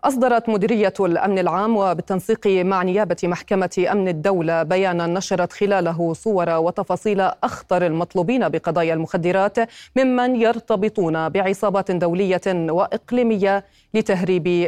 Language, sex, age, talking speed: Arabic, female, 30-49, 100 wpm